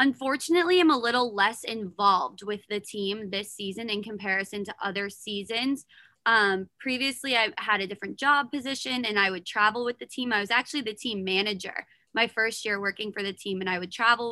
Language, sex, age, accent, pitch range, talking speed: English, female, 20-39, American, 200-235 Hz, 200 wpm